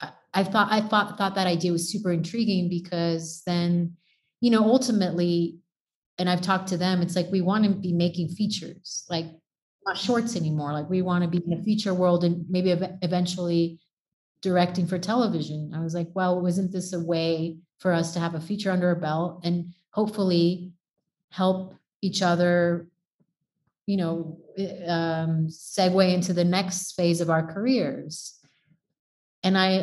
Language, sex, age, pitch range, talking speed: English, female, 30-49, 170-190 Hz, 165 wpm